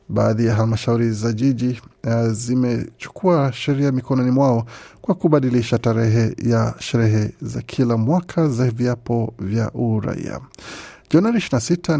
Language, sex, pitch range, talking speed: Swahili, male, 115-140 Hz, 115 wpm